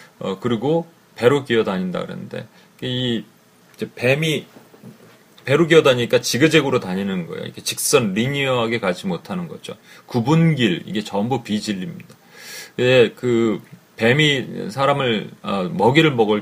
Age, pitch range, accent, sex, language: 30-49, 120-165 Hz, native, male, Korean